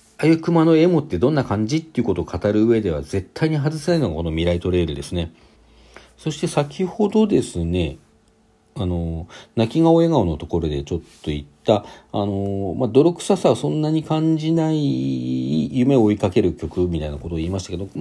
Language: Japanese